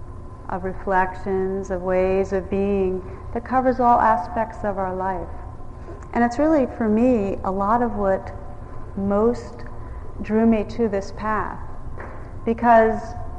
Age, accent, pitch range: 40-59, American, 180-225 Hz